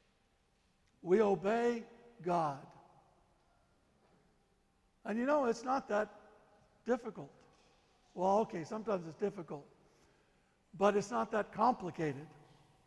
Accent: American